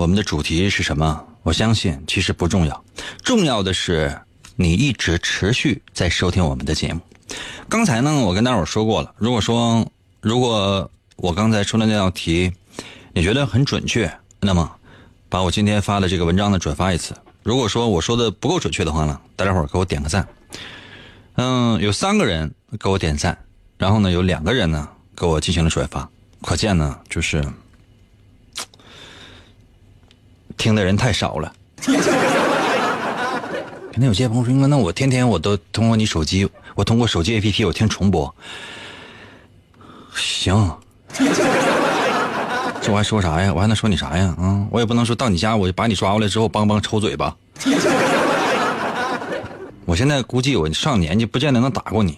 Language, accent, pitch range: Chinese, native, 90-115 Hz